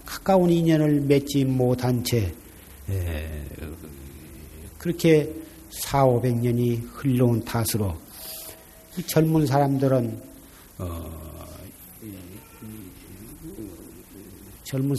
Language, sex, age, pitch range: Korean, male, 50-69, 95-145 Hz